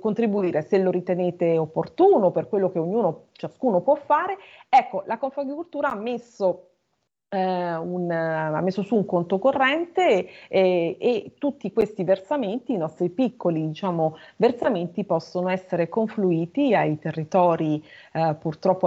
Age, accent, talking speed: 30-49, native, 135 wpm